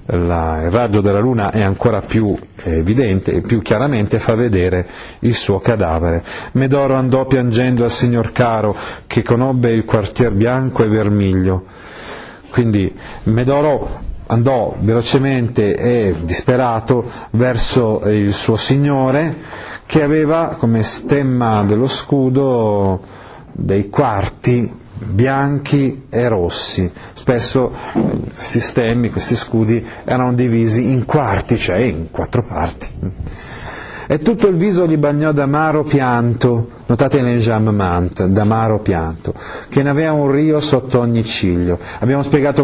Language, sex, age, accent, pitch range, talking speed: Italian, male, 30-49, native, 105-135 Hz, 120 wpm